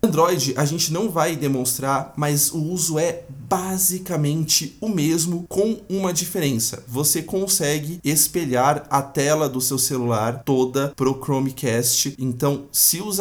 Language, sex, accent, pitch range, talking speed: Portuguese, male, Brazilian, 125-160 Hz, 135 wpm